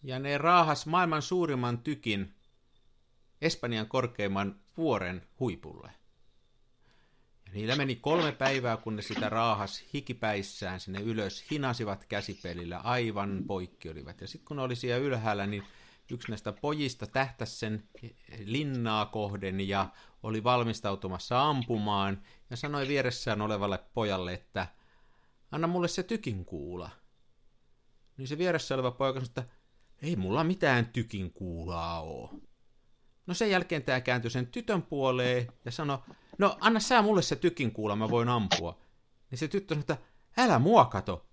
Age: 50-69